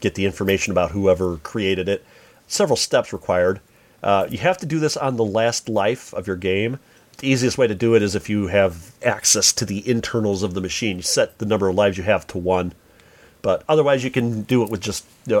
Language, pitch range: English, 105-160 Hz